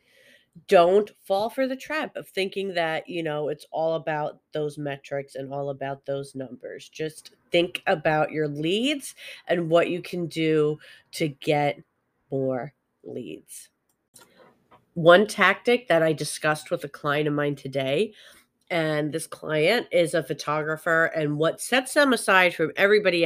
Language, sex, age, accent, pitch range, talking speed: English, female, 40-59, American, 150-190 Hz, 150 wpm